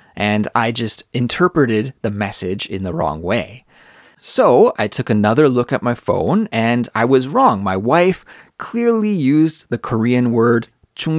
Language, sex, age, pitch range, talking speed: English, male, 30-49, 105-135 Hz, 155 wpm